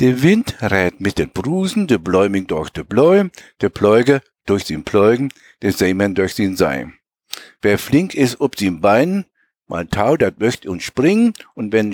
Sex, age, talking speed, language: male, 60-79, 175 wpm, German